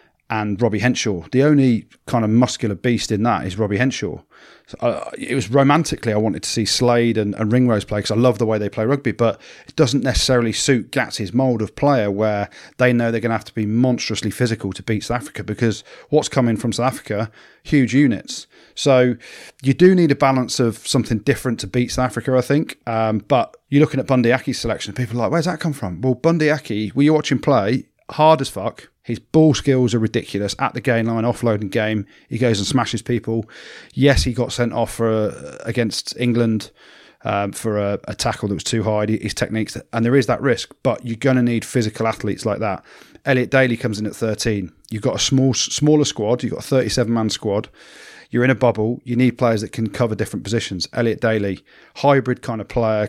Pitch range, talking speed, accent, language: 110-130 Hz, 215 wpm, British, English